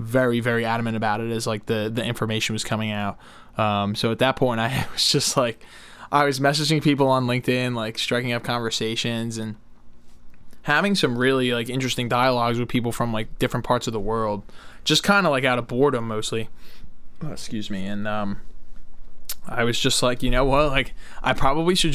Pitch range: 115-140 Hz